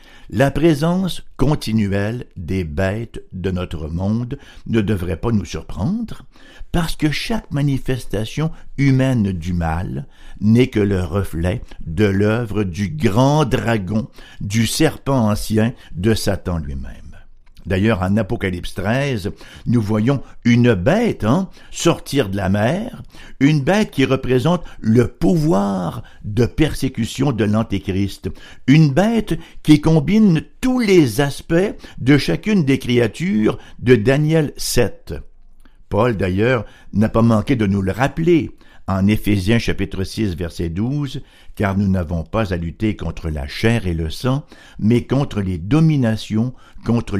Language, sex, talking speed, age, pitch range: French, male, 135 wpm, 60-79, 95-140 Hz